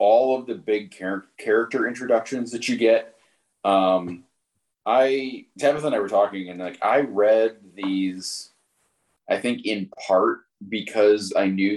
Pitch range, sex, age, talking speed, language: 95-120 Hz, male, 30-49, 145 wpm, English